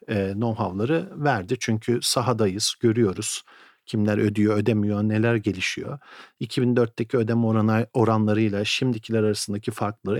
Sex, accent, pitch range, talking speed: male, native, 105-140 Hz, 95 wpm